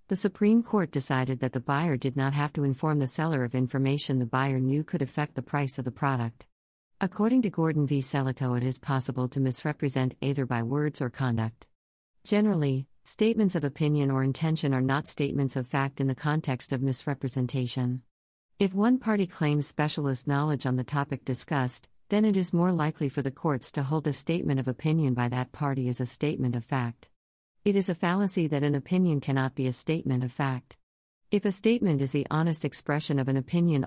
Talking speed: 200 wpm